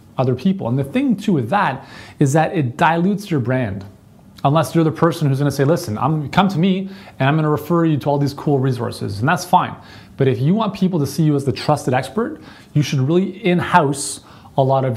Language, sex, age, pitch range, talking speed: English, male, 30-49, 120-160 Hz, 235 wpm